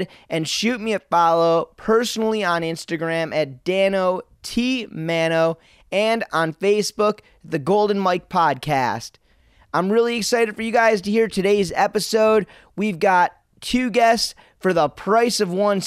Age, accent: 30-49, American